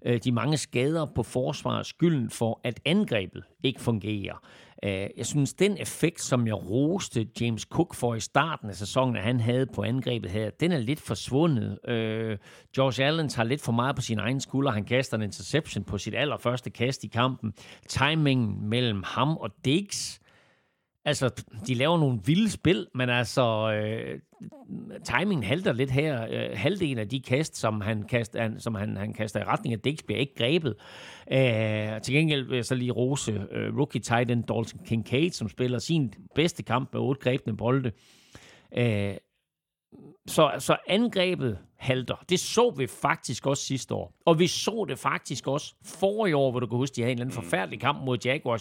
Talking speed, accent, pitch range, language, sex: 180 wpm, native, 115-145 Hz, Danish, male